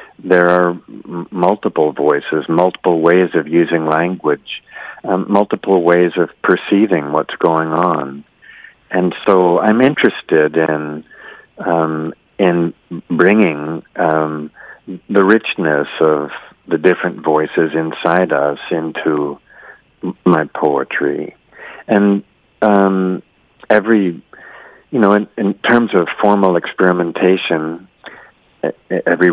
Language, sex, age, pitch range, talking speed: English, male, 50-69, 80-90 Hz, 100 wpm